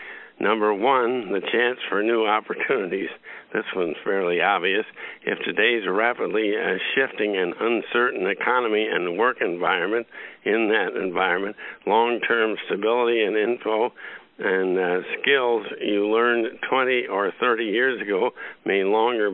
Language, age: English, 60-79